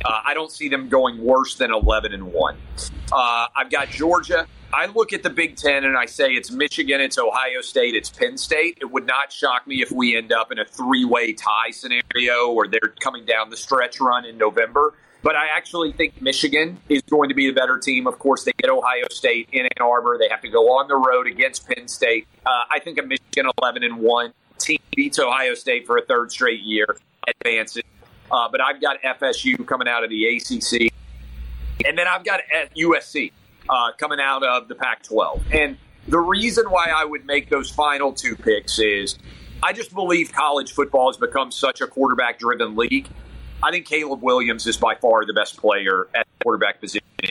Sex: male